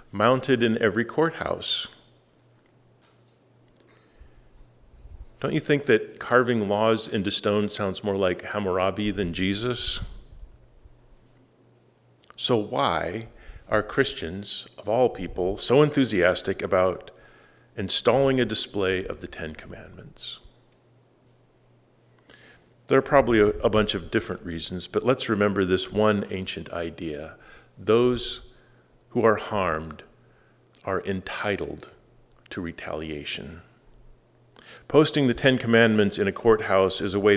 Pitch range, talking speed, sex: 95-120 Hz, 110 wpm, male